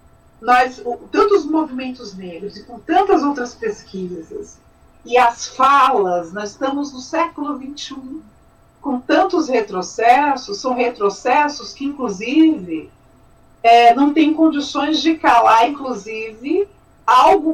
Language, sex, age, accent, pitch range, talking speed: Portuguese, female, 50-69, Brazilian, 205-305 Hz, 110 wpm